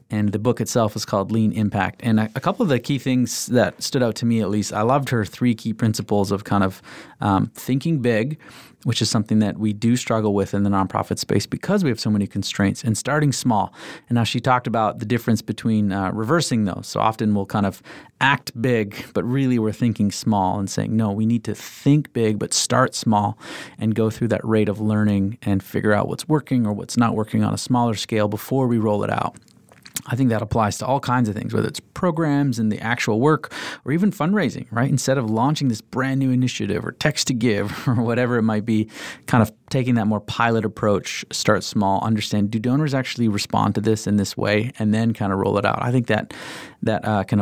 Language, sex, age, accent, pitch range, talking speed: English, male, 30-49, American, 105-125 Hz, 230 wpm